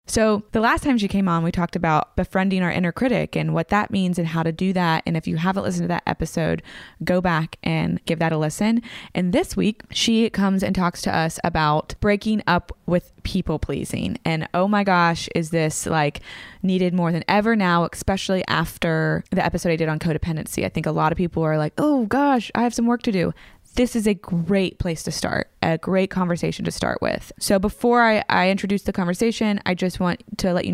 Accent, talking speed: American, 225 wpm